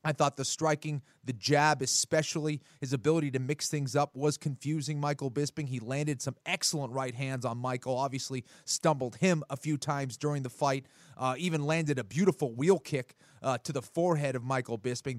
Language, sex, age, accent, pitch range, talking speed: English, male, 30-49, American, 135-160 Hz, 190 wpm